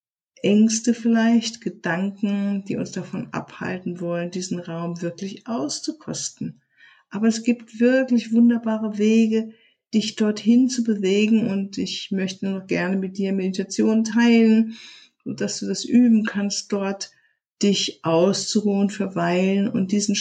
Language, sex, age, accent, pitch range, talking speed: German, female, 50-69, German, 200-235 Hz, 125 wpm